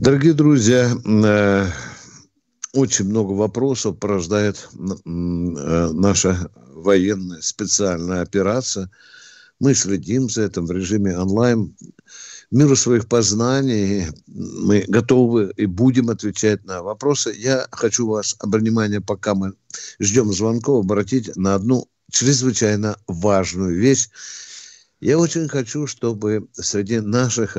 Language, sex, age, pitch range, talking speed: Russian, male, 60-79, 100-135 Hz, 100 wpm